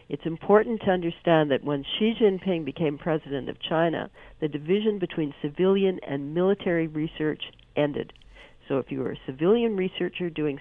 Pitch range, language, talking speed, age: 145-185 Hz, English, 160 wpm, 50-69